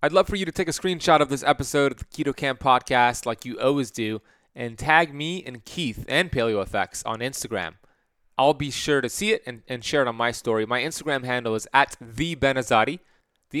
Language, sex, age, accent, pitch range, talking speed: English, male, 20-39, American, 120-155 Hz, 220 wpm